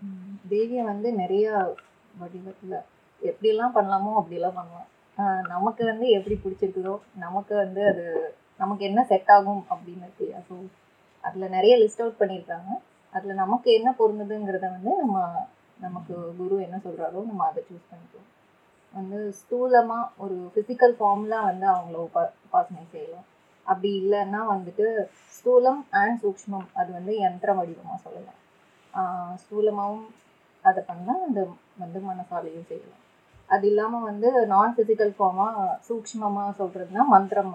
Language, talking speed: Tamil, 125 wpm